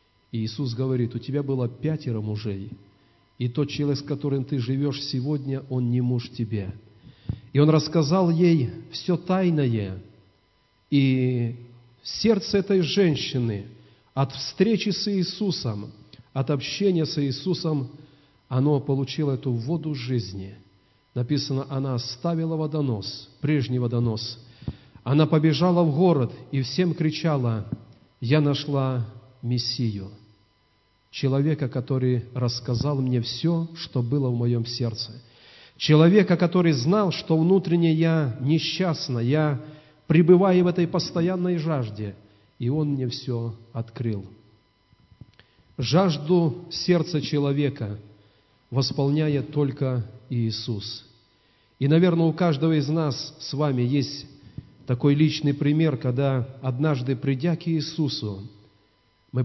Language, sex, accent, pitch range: Russian, male, native, 115-155 Hz